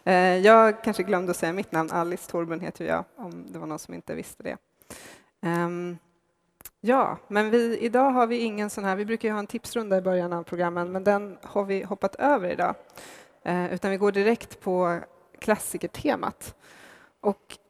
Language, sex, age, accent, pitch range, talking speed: English, female, 20-39, Swedish, 170-205 Hz, 175 wpm